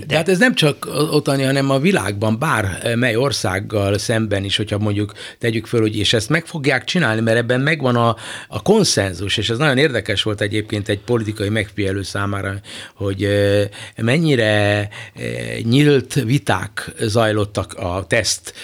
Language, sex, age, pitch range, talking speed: Hungarian, male, 60-79, 105-135 Hz, 150 wpm